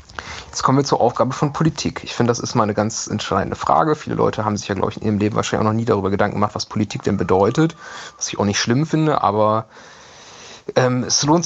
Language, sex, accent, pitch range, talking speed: German, male, German, 105-125 Hz, 245 wpm